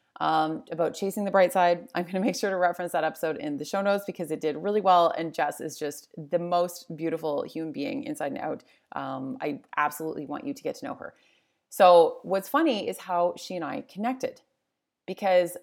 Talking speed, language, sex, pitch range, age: 215 wpm, English, female, 165-225 Hz, 30-49